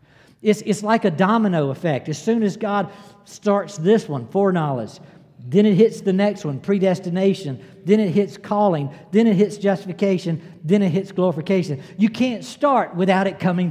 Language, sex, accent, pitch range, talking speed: English, male, American, 150-210 Hz, 170 wpm